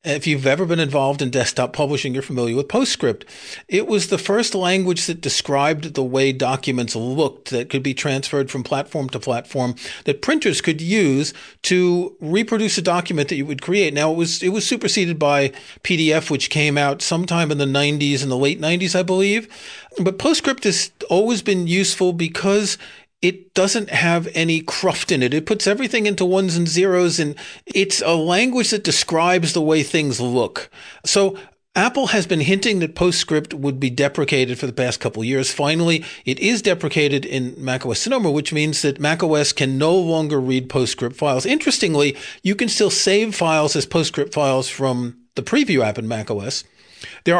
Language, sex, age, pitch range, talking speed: English, male, 40-59, 135-190 Hz, 180 wpm